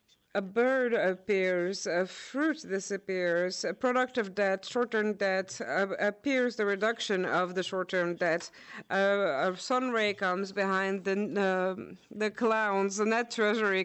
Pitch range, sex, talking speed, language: 190-215 Hz, female, 145 wpm, French